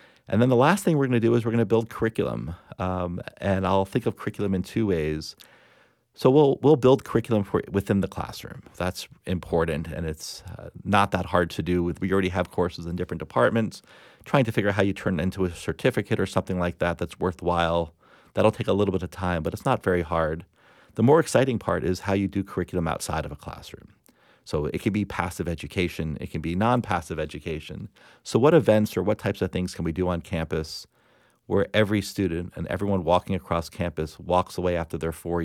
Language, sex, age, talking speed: English, male, 40-59, 220 wpm